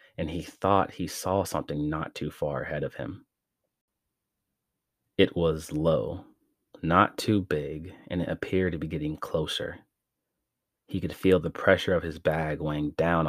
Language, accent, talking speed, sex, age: English, American, 160 wpm, male, 30-49